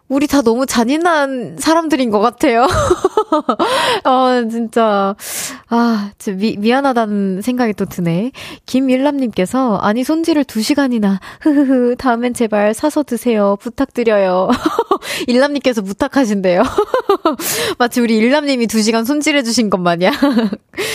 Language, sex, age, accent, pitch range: Korean, female, 20-39, native, 190-275 Hz